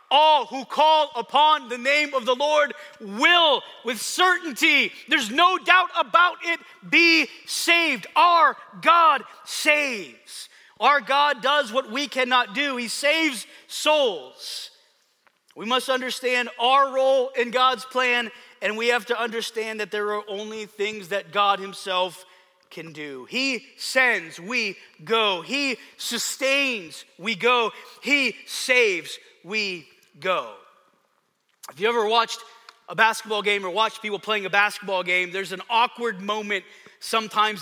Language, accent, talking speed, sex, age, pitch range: English, American, 135 wpm, male, 30-49, 205-270 Hz